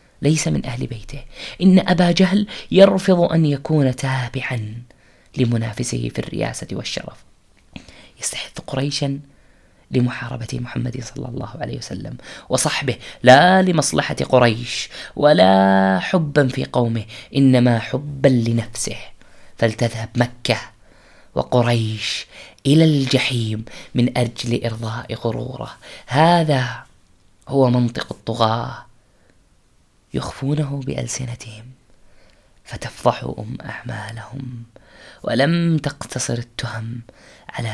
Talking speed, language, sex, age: 90 wpm, Arabic, female, 20-39